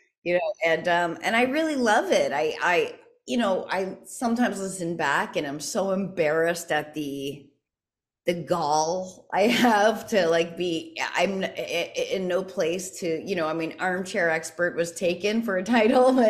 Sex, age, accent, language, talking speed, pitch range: female, 30-49, American, English, 170 wpm, 170-230 Hz